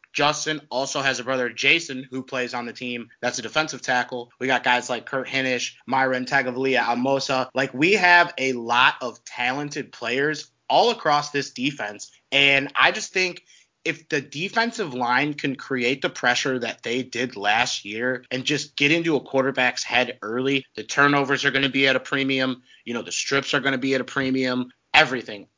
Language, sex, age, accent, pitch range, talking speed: English, male, 20-39, American, 125-145 Hz, 190 wpm